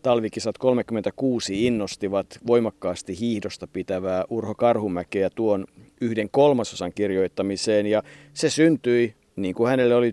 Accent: native